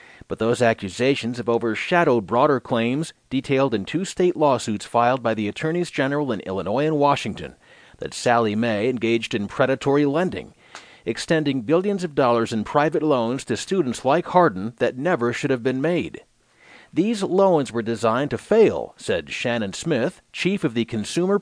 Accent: American